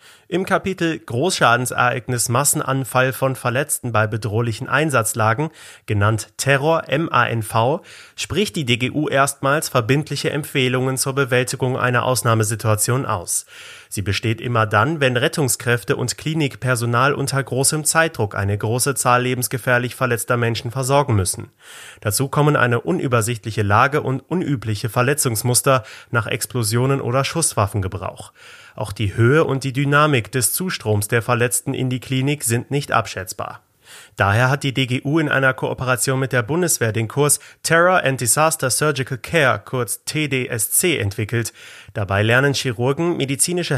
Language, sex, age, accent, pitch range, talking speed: German, male, 30-49, German, 115-140 Hz, 125 wpm